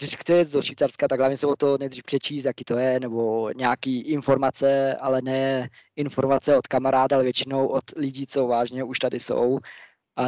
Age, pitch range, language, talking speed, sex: 20-39, 125-145 Hz, Czech, 185 wpm, male